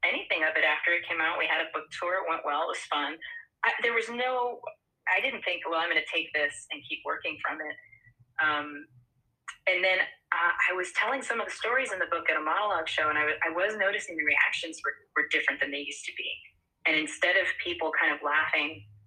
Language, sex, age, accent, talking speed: English, female, 30-49, American, 235 wpm